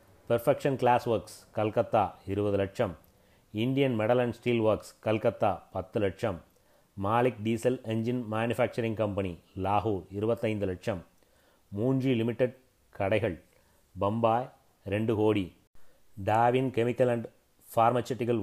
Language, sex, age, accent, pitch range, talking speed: Tamil, male, 30-49, native, 100-120 Hz, 105 wpm